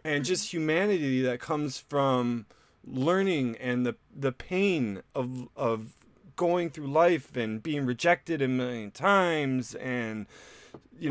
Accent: American